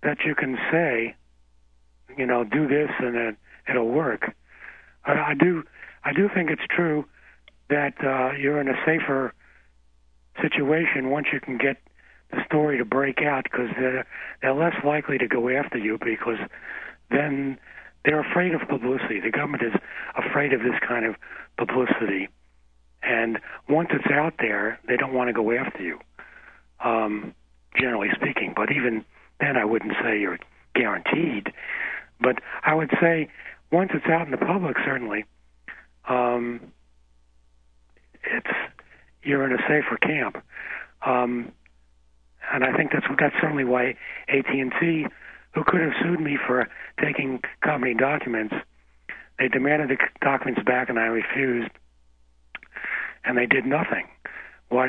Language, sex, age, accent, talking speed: English, male, 60-79, American, 145 wpm